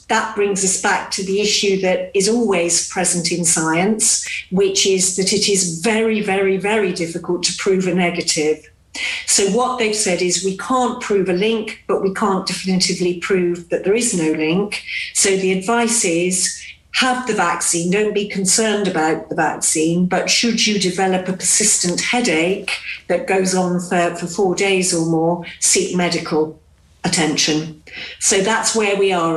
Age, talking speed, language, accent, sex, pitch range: 50-69, 170 wpm, English, British, female, 175-200 Hz